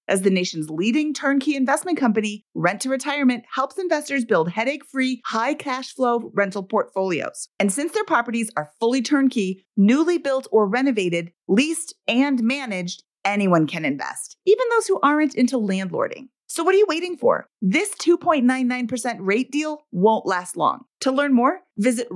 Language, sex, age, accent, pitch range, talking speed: English, female, 30-49, American, 205-295 Hz, 155 wpm